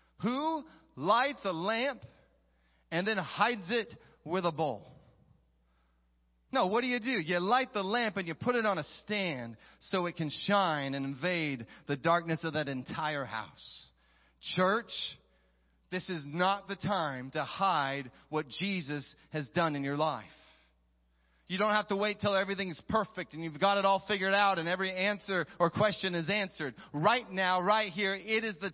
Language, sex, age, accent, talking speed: English, male, 30-49, American, 175 wpm